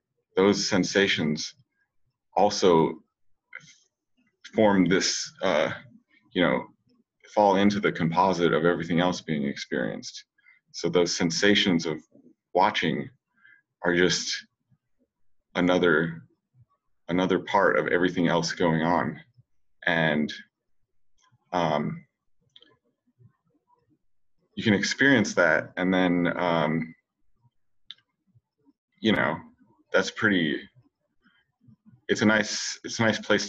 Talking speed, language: 95 wpm, English